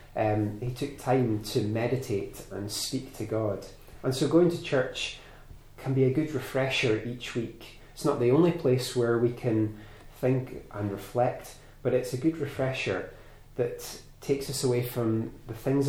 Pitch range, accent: 105-130 Hz, British